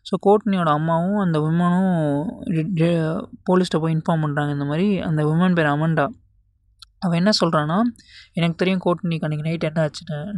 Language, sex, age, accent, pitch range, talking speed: Tamil, male, 20-39, native, 150-180 Hz, 145 wpm